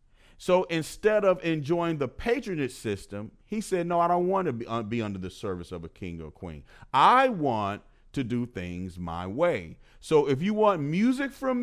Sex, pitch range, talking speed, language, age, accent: male, 115-180 Hz, 195 wpm, English, 40-59, American